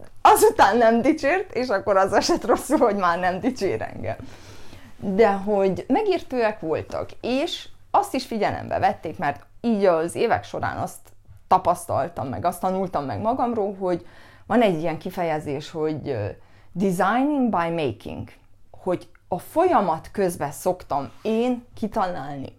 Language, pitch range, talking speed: Hungarian, 150-225 Hz, 135 wpm